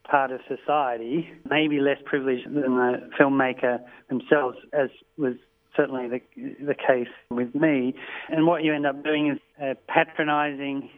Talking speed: 150 wpm